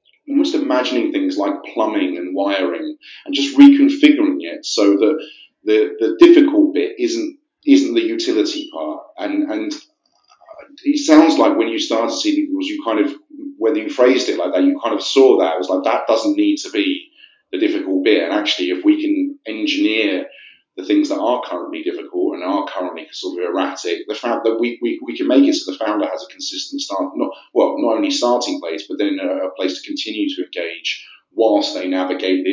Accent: British